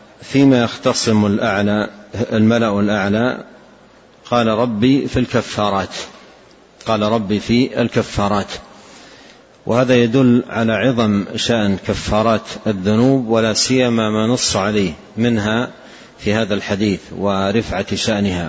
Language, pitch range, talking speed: Arabic, 105-120 Hz, 100 wpm